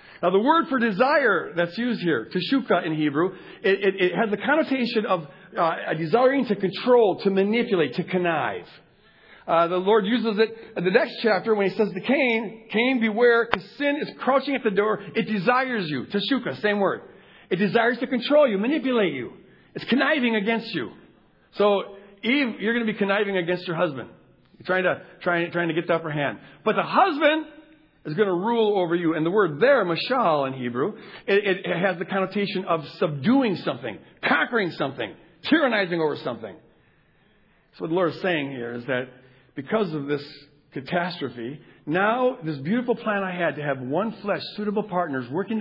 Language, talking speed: English, 185 wpm